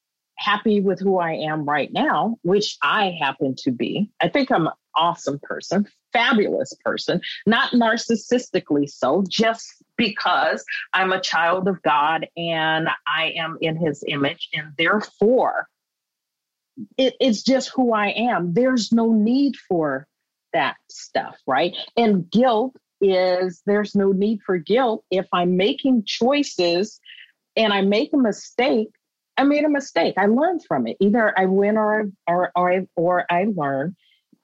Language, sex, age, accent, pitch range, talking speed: English, female, 40-59, American, 165-225 Hz, 145 wpm